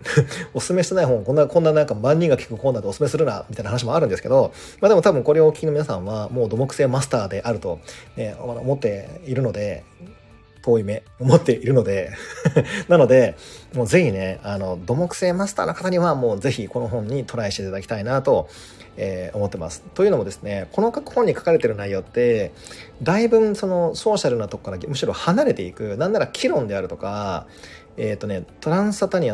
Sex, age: male, 40-59